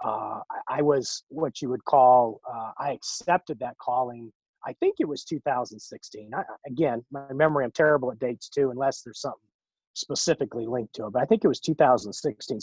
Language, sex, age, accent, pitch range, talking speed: English, male, 30-49, American, 130-155 Hz, 185 wpm